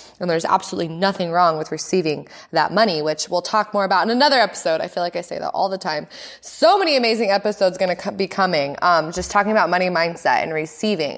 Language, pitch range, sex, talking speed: English, 175-225 Hz, female, 225 wpm